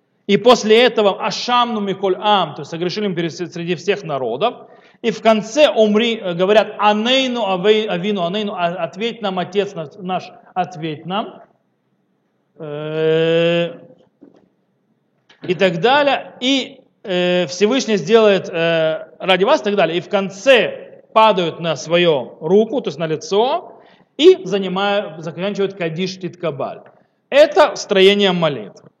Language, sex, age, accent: Russian, male, 40-59, native